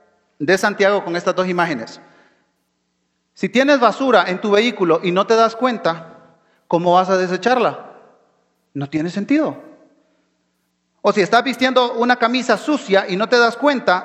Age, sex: 40-59, male